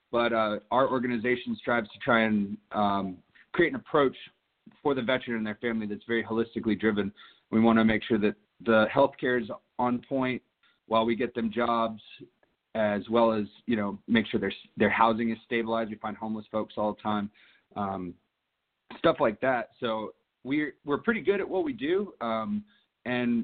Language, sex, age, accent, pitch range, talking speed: English, male, 30-49, American, 110-125 Hz, 185 wpm